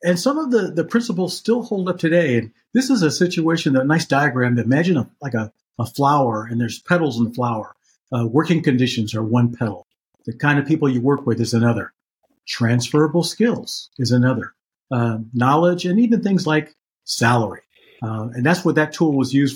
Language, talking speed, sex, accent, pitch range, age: English, 200 wpm, male, American, 120-155 Hz, 50-69